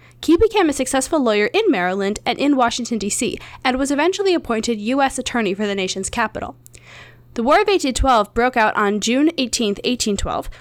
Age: 10-29